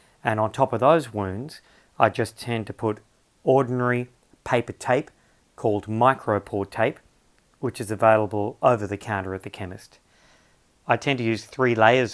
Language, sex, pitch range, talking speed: English, male, 105-125 Hz, 160 wpm